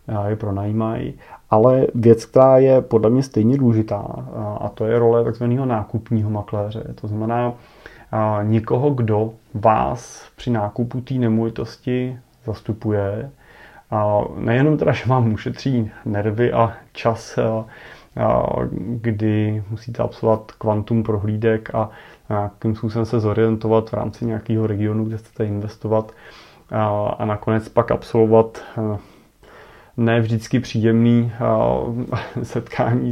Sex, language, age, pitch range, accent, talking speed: male, Czech, 30-49, 110-115 Hz, native, 120 wpm